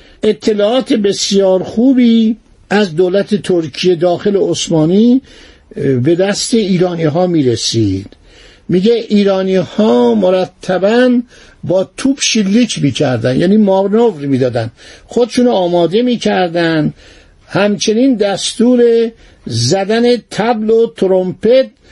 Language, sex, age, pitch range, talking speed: Persian, male, 60-79, 165-215 Hz, 95 wpm